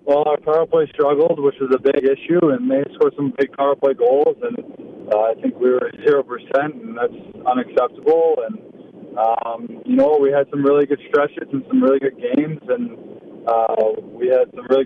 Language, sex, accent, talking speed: English, male, American, 200 wpm